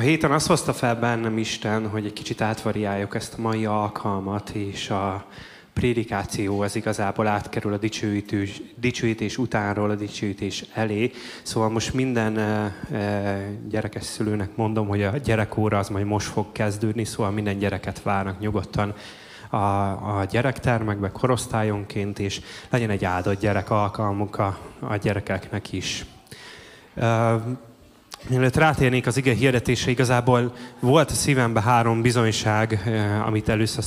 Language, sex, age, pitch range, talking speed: Hungarian, male, 20-39, 105-115 Hz, 135 wpm